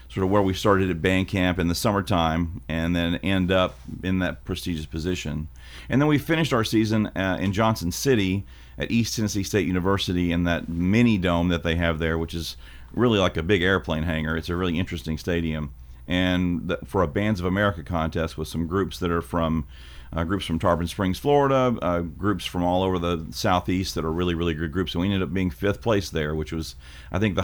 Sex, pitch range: male, 80-100 Hz